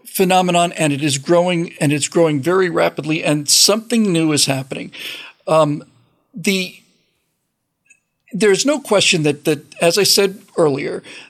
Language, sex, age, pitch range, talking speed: English, male, 50-69, 165-220 Hz, 145 wpm